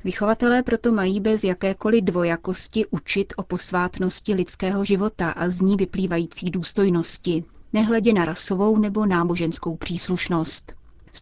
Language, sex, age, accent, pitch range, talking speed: Czech, female, 30-49, native, 175-205 Hz, 125 wpm